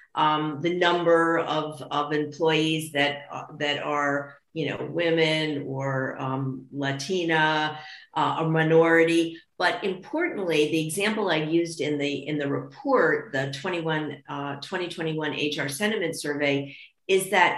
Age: 50-69